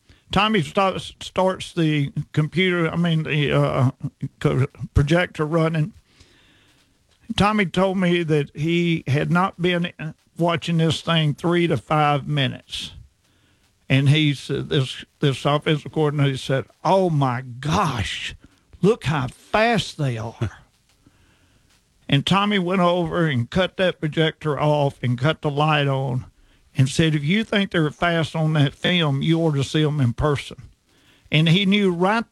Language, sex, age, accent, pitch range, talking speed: English, male, 50-69, American, 140-175 Hz, 145 wpm